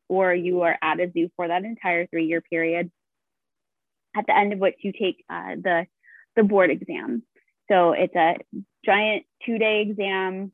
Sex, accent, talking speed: female, American, 175 wpm